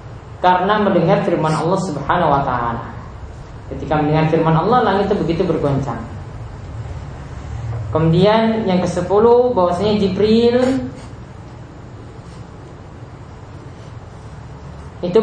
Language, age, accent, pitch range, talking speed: Indonesian, 20-39, native, 145-195 Hz, 85 wpm